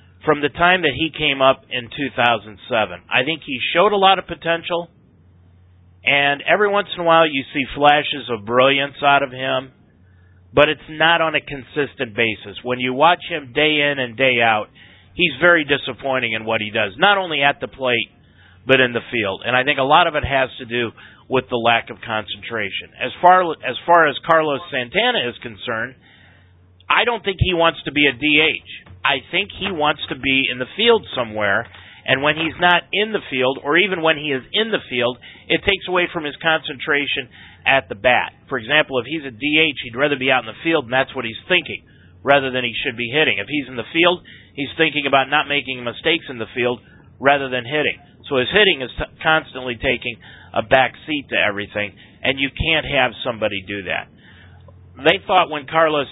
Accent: American